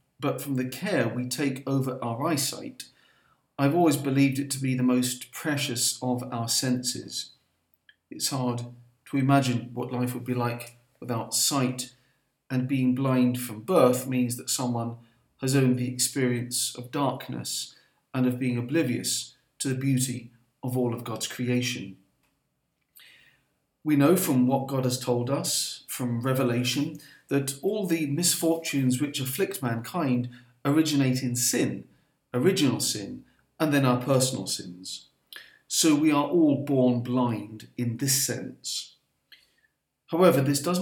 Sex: male